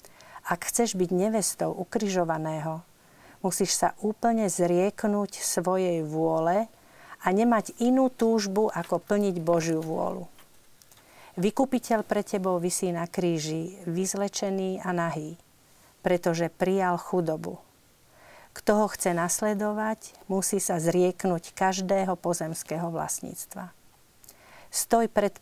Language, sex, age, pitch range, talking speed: Slovak, female, 50-69, 170-205 Hz, 100 wpm